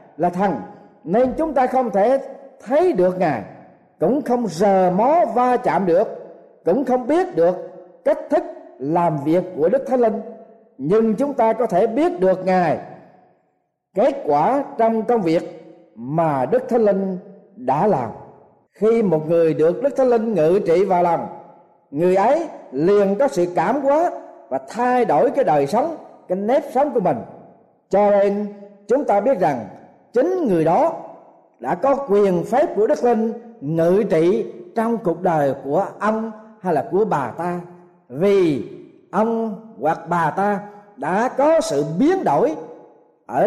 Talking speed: 160 wpm